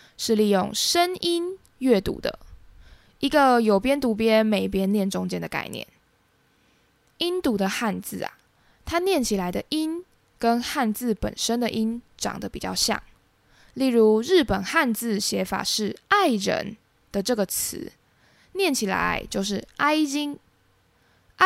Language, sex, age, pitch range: Chinese, female, 10-29, 200-285 Hz